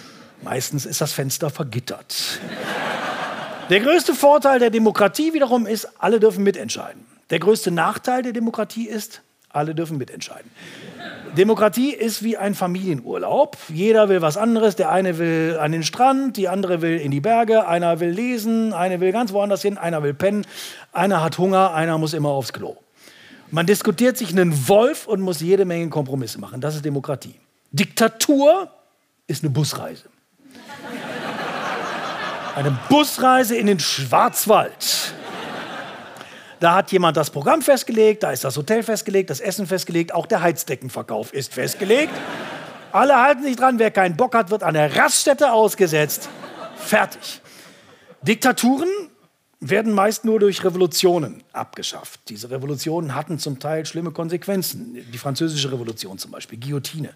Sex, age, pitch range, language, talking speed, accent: male, 40-59, 155-225 Hz, German, 145 wpm, German